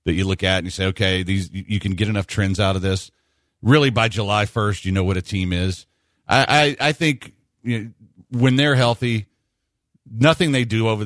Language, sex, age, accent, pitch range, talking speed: English, male, 50-69, American, 95-120 Hz, 215 wpm